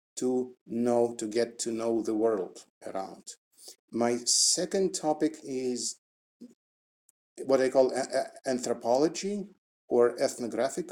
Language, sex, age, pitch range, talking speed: English, male, 50-69, 110-135 Hz, 105 wpm